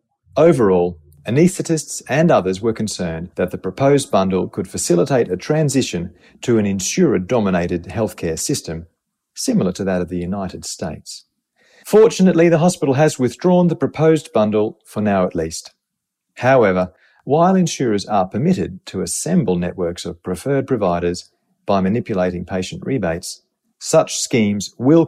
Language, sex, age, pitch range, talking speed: English, male, 40-59, 90-130 Hz, 135 wpm